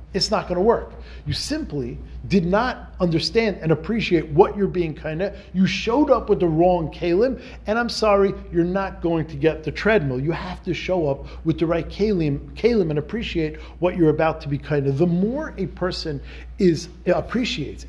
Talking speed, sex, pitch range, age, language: 190 wpm, male, 140-195 Hz, 40-59, English